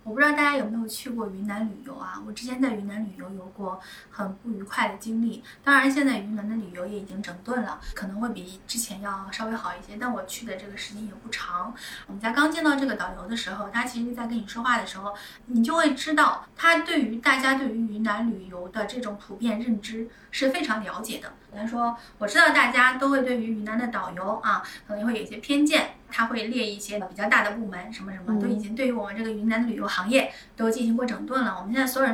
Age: 20-39